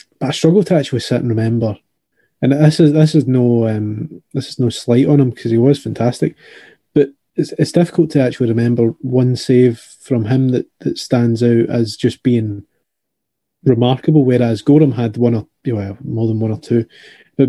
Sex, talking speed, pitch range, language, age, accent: male, 190 wpm, 115-140 Hz, English, 20-39, British